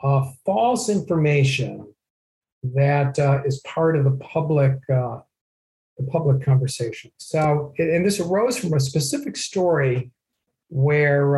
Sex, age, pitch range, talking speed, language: male, 50-69, 135-180 Hz, 120 wpm, English